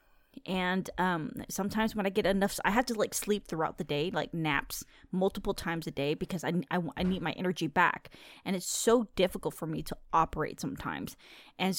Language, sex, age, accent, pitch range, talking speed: English, female, 20-39, American, 175-215 Hz, 200 wpm